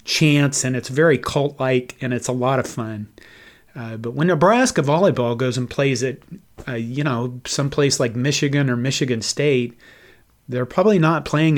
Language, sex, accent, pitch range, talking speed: English, male, American, 120-150 Hz, 170 wpm